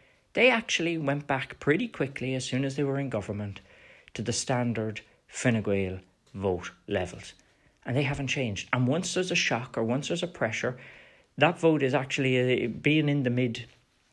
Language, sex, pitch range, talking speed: English, male, 105-135 Hz, 180 wpm